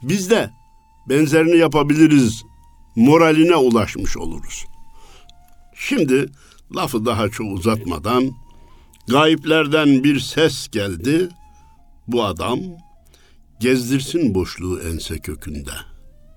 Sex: male